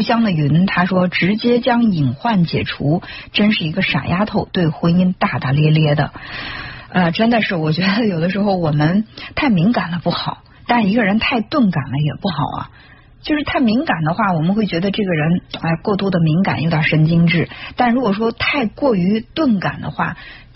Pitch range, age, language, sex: 155-210 Hz, 50-69, Chinese, female